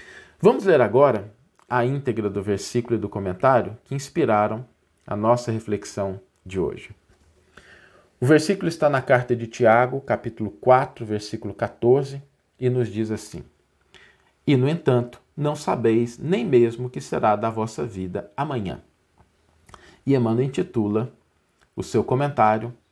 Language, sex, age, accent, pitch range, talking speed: Portuguese, male, 50-69, Brazilian, 105-140 Hz, 135 wpm